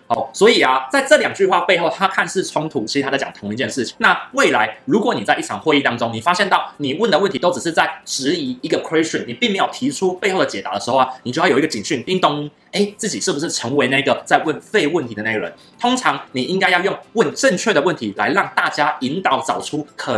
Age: 30-49